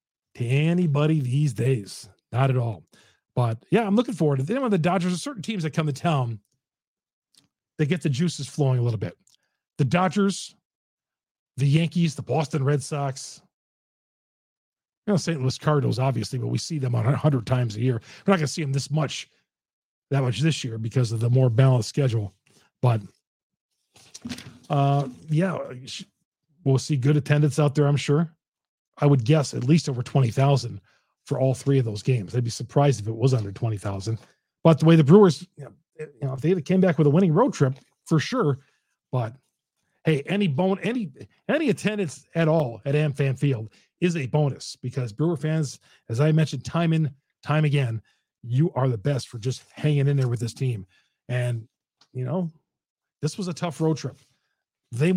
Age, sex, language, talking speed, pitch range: 40-59, male, English, 185 wpm, 130-160 Hz